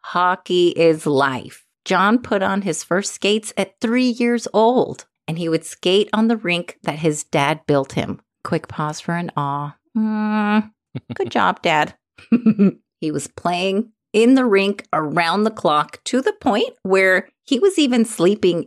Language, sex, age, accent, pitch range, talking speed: English, female, 30-49, American, 155-215 Hz, 160 wpm